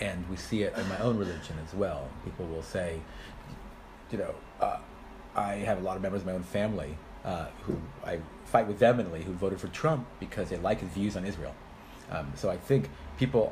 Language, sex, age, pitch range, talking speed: English, male, 30-49, 80-105 Hz, 215 wpm